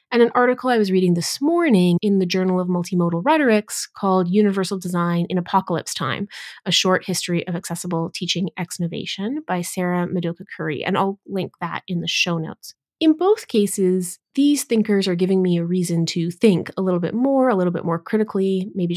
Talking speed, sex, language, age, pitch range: 190 wpm, female, English, 30-49, 175-230 Hz